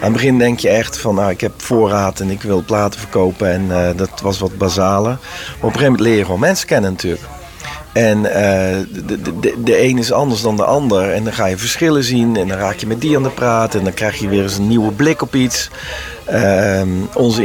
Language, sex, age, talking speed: Dutch, male, 50-69, 245 wpm